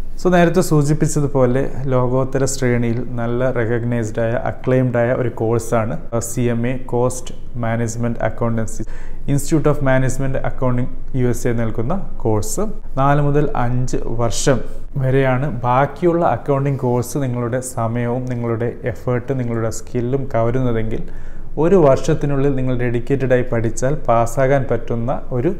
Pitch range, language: 115-135 Hz, Malayalam